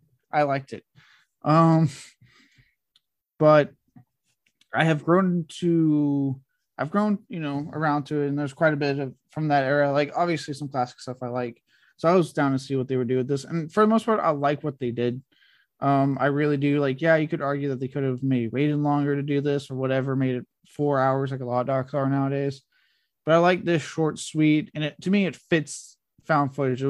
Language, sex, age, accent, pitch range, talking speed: English, male, 20-39, American, 135-150 Hz, 225 wpm